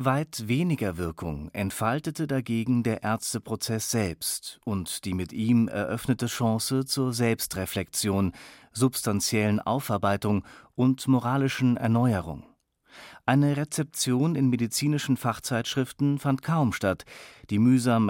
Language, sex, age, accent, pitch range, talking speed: German, male, 40-59, German, 105-135 Hz, 105 wpm